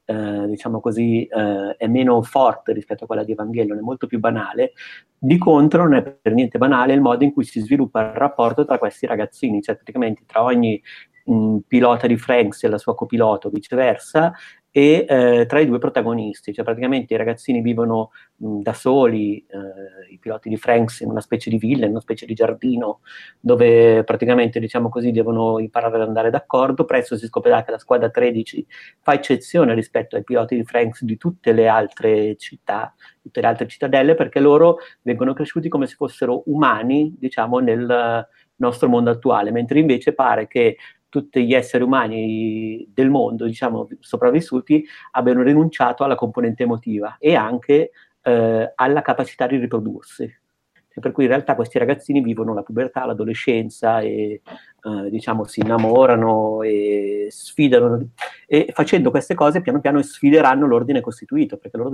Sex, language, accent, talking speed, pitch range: male, Italian, native, 170 wpm, 110-135 Hz